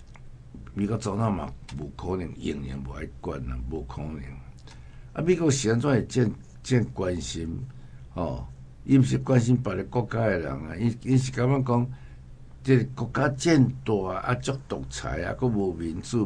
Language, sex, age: Chinese, male, 60-79